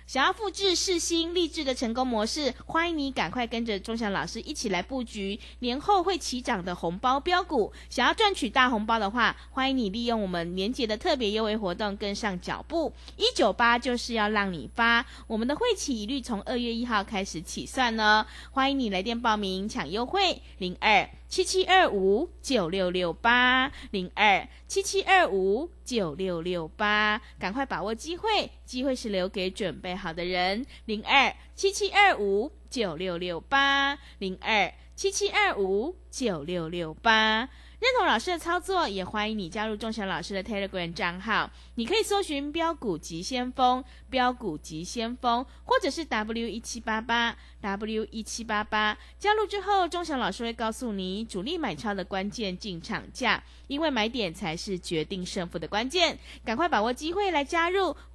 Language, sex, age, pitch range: Chinese, female, 20-39, 200-290 Hz